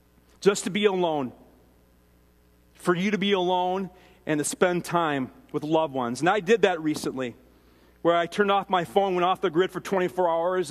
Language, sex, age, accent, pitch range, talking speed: English, male, 40-59, American, 120-175 Hz, 190 wpm